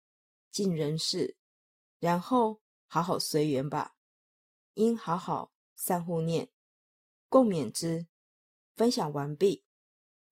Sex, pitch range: female, 160-225 Hz